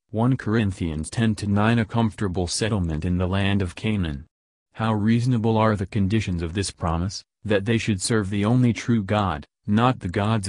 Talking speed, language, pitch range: 185 wpm, English, 95-110 Hz